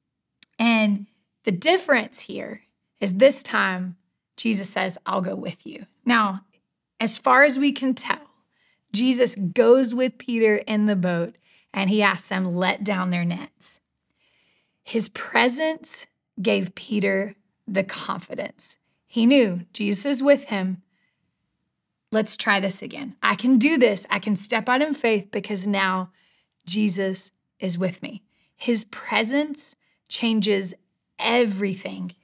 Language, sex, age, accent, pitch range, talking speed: English, female, 30-49, American, 200-250 Hz, 130 wpm